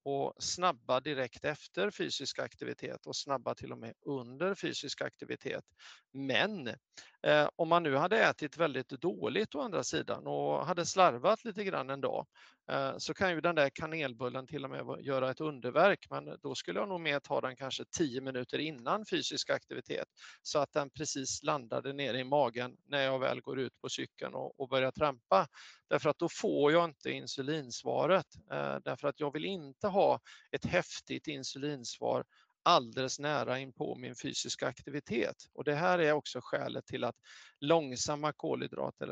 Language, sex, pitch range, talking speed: Swedish, male, 130-155 Hz, 175 wpm